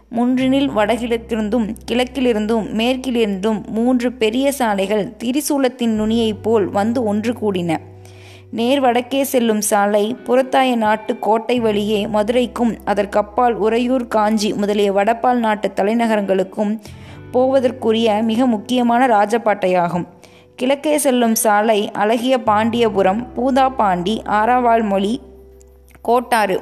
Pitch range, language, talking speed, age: 210-245 Hz, Tamil, 90 wpm, 20-39